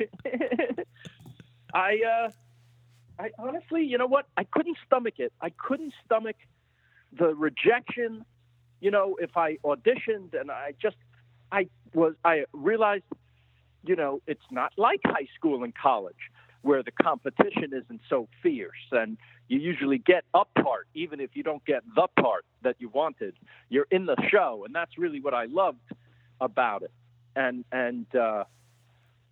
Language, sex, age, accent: English, male, 50-69, American